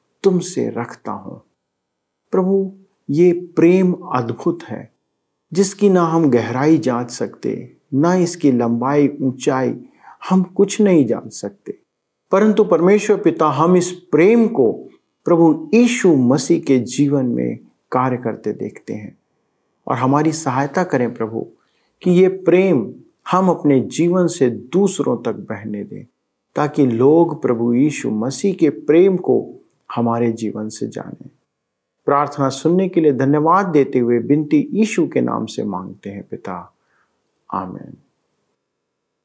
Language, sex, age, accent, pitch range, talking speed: Hindi, male, 50-69, native, 125-180 Hz, 130 wpm